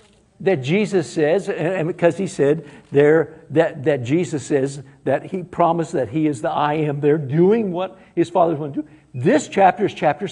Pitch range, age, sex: 165-220 Hz, 60-79, male